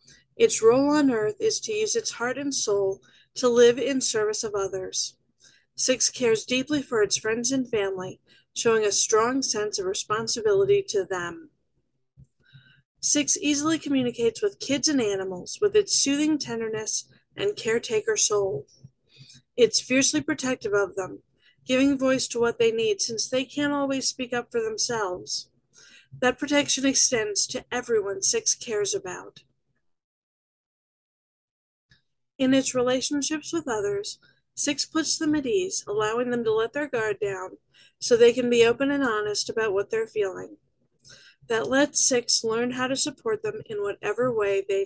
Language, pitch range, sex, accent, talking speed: English, 210-305 Hz, female, American, 150 wpm